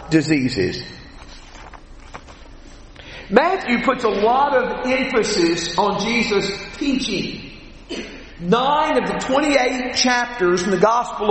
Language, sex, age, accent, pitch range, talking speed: English, male, 50-69, American, 225-290 Hz, 95 wpm